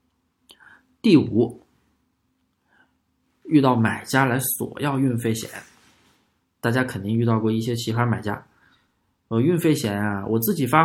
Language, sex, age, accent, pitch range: Chinese, male, 20-39, native, 110-140 Hz